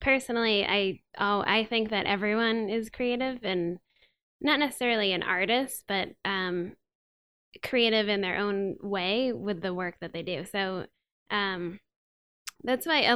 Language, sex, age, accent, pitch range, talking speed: English, female, 10-29, American, 185-220 Hz, 145 wpm